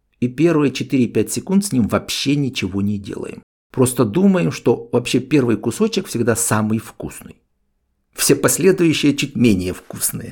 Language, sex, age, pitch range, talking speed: Russian, male, 60-79, 110-150 Hz, 140 wpm